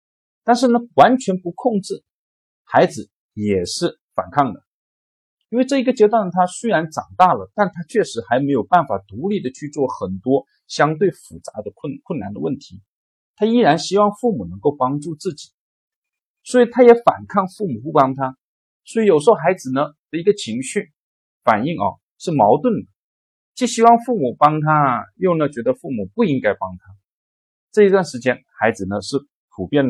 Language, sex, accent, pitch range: Chinese, male, native, 130-215 Hz